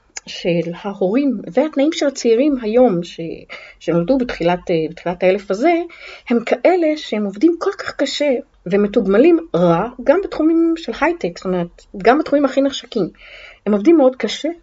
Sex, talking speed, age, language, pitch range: female, 140 wpm, 30-49, Hebrew, 190-300 Hz